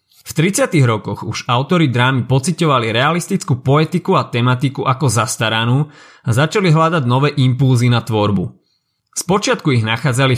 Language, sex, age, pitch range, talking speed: Slovak, male, 30-49, 120-145 Hz, 135 wpm